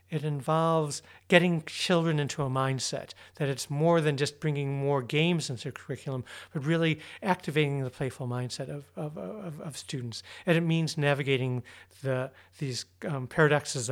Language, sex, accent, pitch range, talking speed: Danish, male, American, 140-165 Hz, 160 wpm